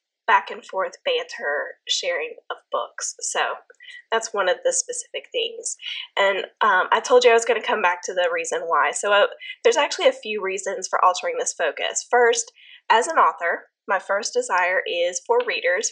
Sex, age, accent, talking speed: female, 10-29, American, 185 wpm